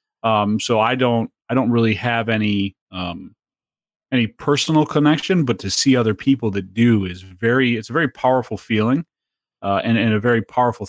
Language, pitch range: English, 105-125 Hz